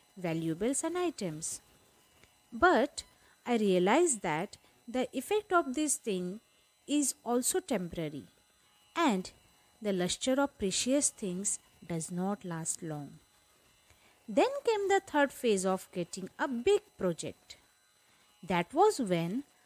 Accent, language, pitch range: native, Hindi, 180-290 Hz